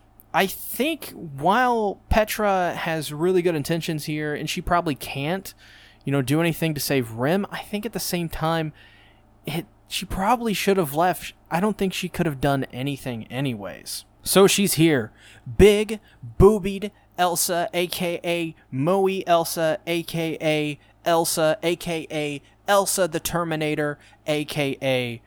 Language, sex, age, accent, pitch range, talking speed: English, male, 20-39, American, 125-190 Hz, 135 wpm